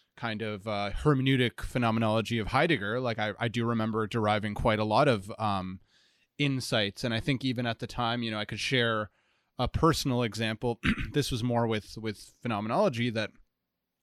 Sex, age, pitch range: male, 20-39, 115-130 Hz